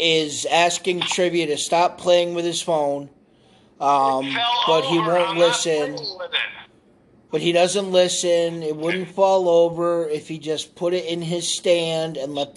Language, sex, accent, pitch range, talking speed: English, male, American, 160-190 Hz, 155 wpm